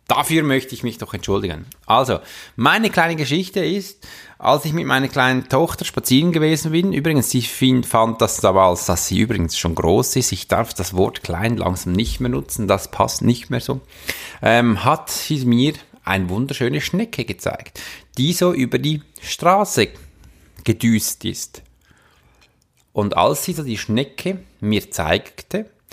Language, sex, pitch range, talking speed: German, male, 100-155 Hz, 160 wpm